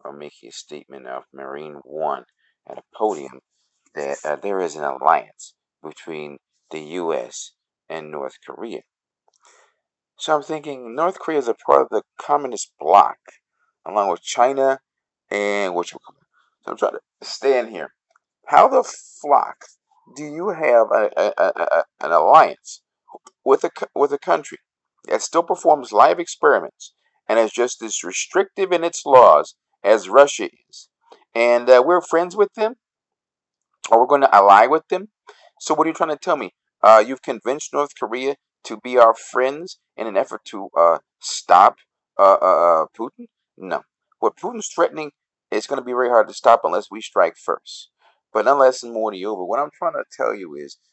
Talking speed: 170 wpm